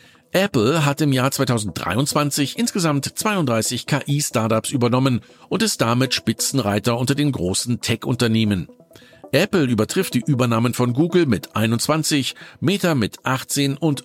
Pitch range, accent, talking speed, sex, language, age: 115-155 Hz, German, 125 wpm, male, German, 50-69